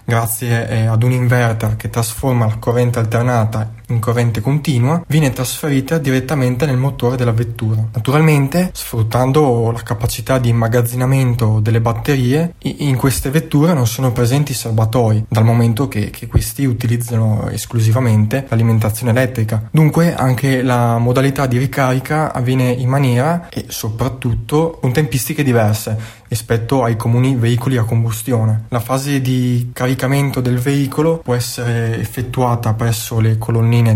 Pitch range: 115-130 Hz